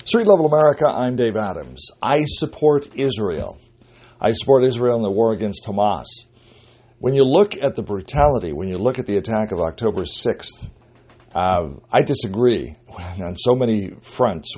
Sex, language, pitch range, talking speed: male, English, 95-120 Hz, 160 wpm